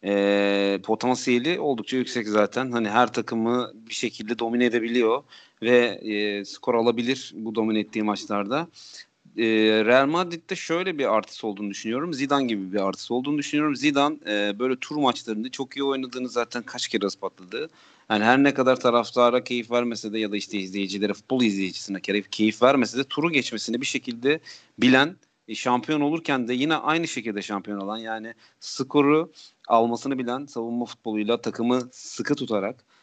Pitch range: 110-135 Hz